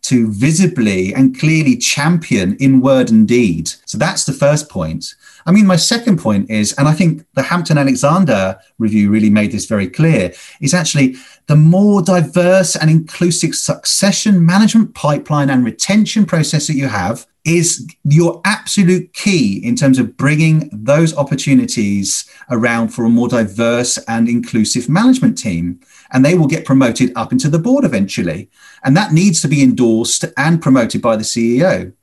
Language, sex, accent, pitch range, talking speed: English, male, British, 120-175 Hz, 165 wpm